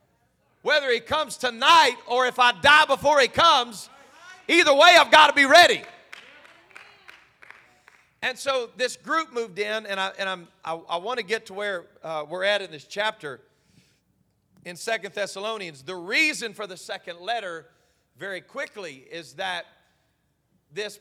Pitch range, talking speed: 195-250 Hz, 155 wpm